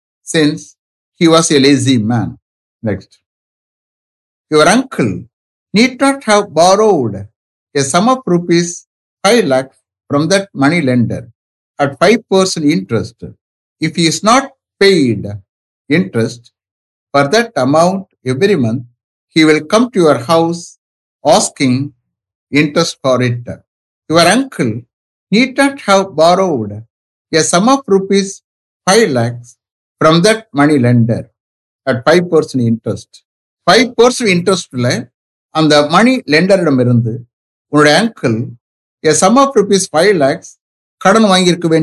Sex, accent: male, Indian